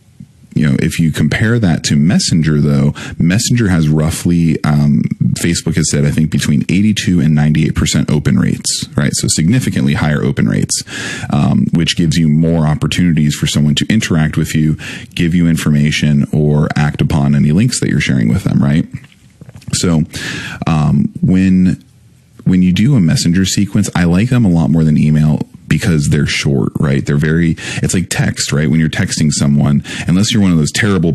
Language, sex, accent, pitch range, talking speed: English, male, American, 75-85 Hz, 175 wpm